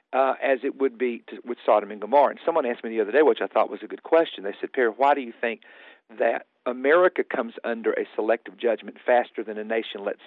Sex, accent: male, American